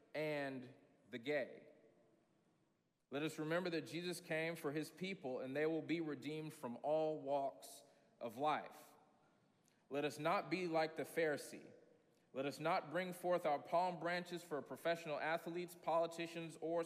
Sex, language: male, English